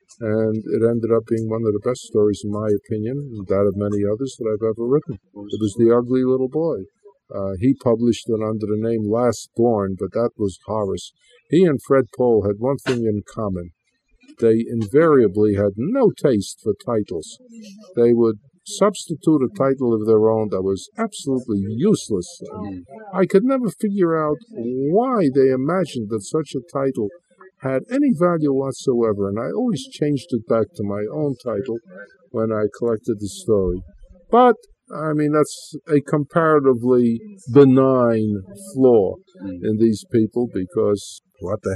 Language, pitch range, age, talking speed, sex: English, 105-155 Hz, 50-69, 165 wpm, male